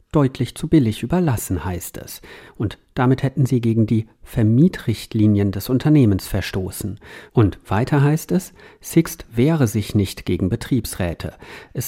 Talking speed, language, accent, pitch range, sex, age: 135 wpm, German, German, 105-145 Hz, male, 50-69